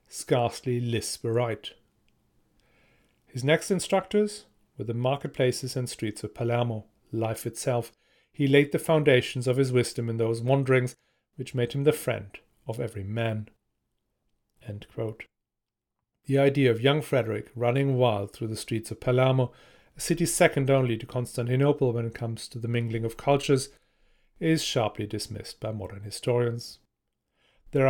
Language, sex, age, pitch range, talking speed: English, male, 40-59, 115-140 Hz, 145 wpm